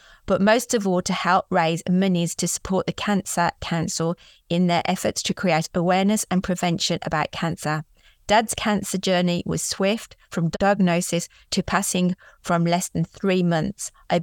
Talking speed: 160 wpm